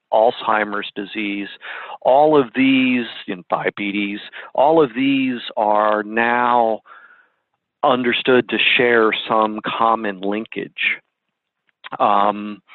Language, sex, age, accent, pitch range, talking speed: English, male, 50-69, American, 105-125 Hz, 90 wpm